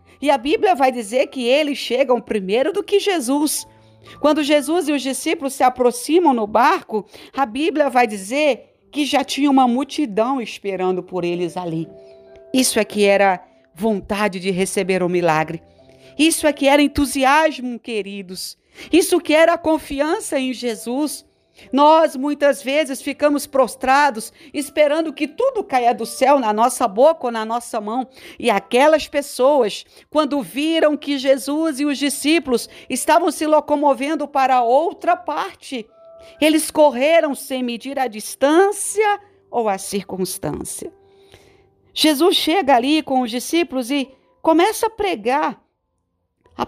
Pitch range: 235-310 Hz